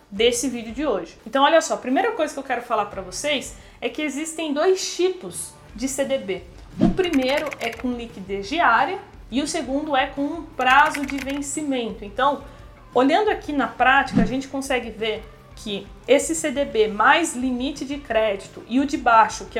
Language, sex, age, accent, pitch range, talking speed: Portuguese, female, 20-39, Brazilian, 235-305 Hz, 180 wpm